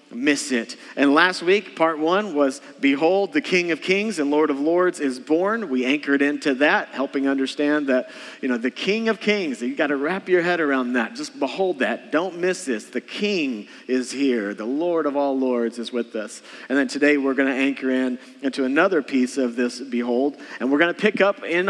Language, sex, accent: English, male, American